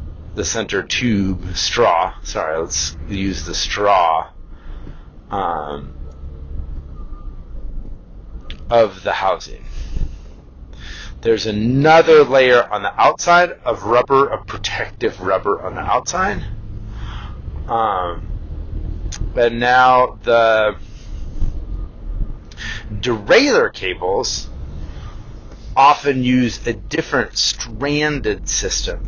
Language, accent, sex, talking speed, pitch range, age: English, American, male, 80 wpm, 80-110 Hz, 30-49